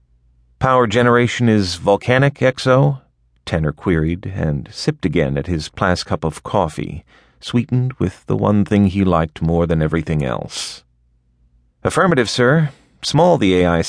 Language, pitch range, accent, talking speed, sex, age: English, 80-115 Hz, American, 140 wpm, male, 40-59